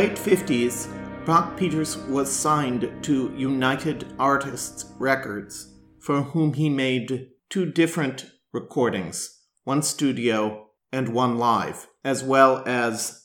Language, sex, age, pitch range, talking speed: English, male, 50-69, 125-150 Hz, 115 wpm